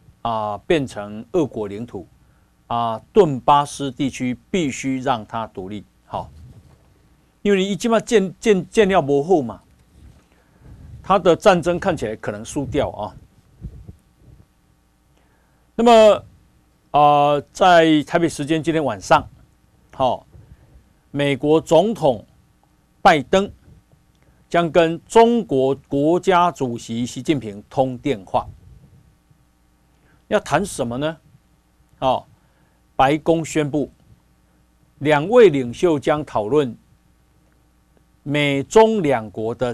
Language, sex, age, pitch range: Chinese, male, 50-69, 105-165 Hz